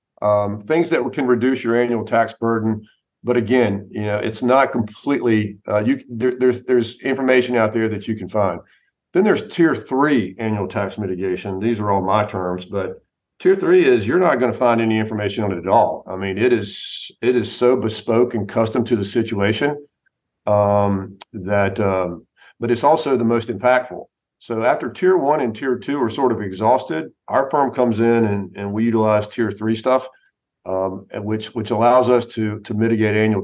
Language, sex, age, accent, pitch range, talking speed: English, male, 50-69, American, 100-120 Hz, 190 wpm